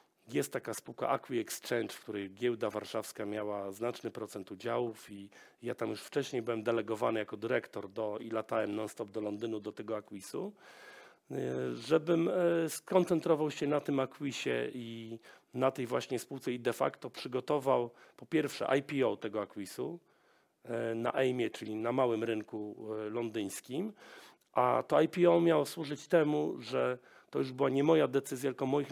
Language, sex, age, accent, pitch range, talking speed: Polish, male, 40-59, native, 110-145 Hz, 150 wpm